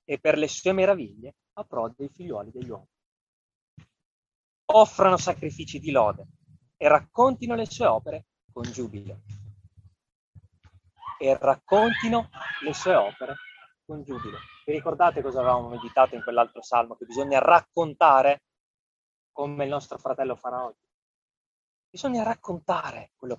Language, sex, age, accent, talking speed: Italian, male, 30-49, native, 125 wpm